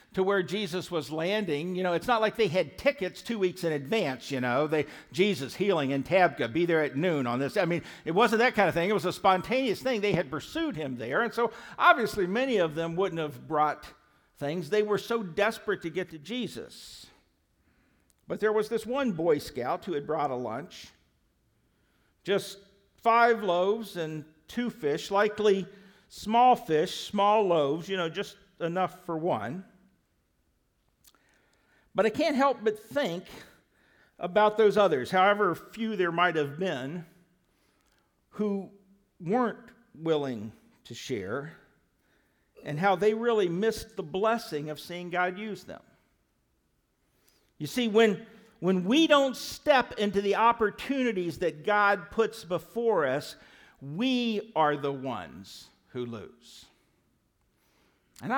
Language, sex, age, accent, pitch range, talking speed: English, male, 50-69, American, 170-225 Hz, 150 wpm